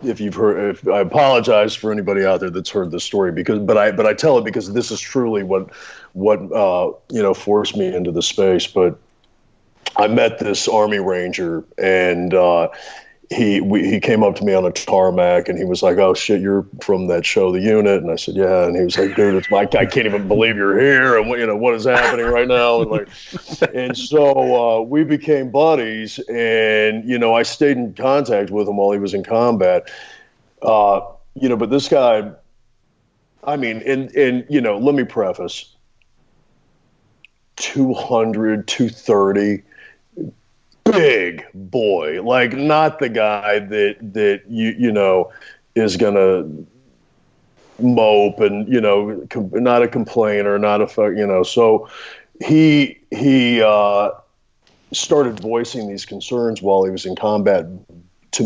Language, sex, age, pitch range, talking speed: English, male, 40-59, 100-120 Hz, 170 wpm